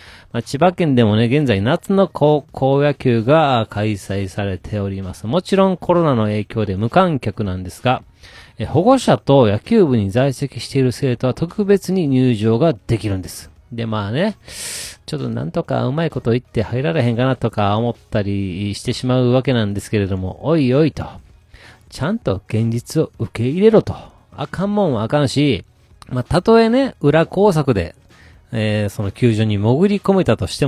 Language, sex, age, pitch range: Japanese, male, 40-59, 105-155 Hz